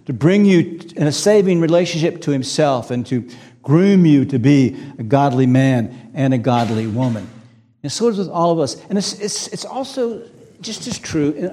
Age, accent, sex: 60-79, American, male